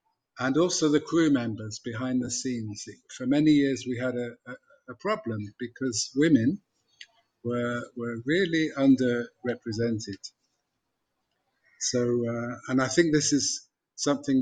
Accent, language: British, English